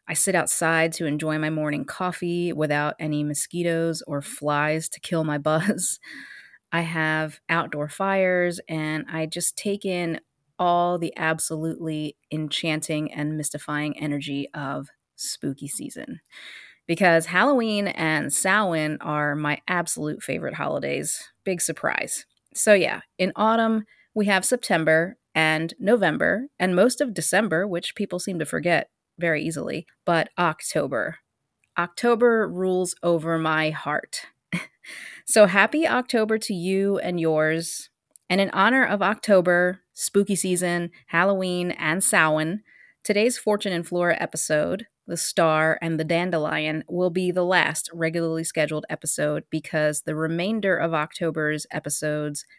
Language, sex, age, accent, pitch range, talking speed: English, female, 30-49, American, 155-185 Hz, 130 wpm